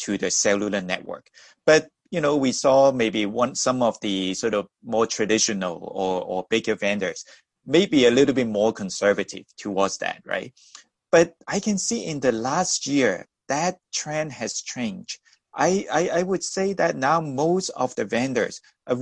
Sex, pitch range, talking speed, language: male, 105-140 Hz, 175 wpm, English